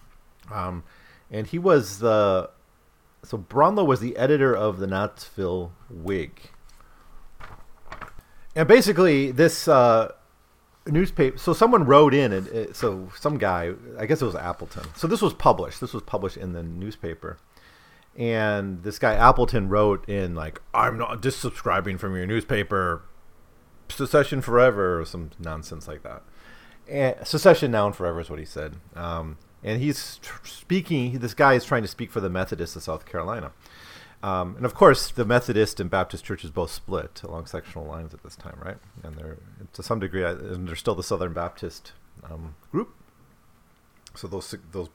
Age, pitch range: 30-49, 85-125 Hz